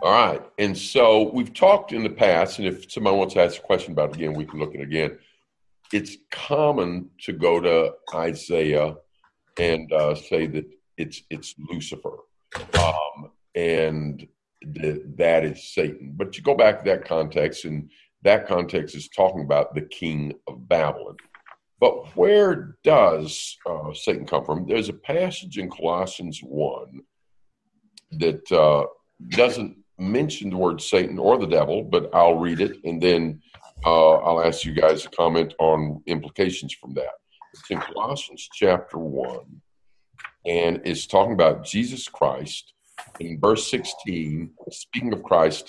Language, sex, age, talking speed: English, male, 50-69, 155 wpm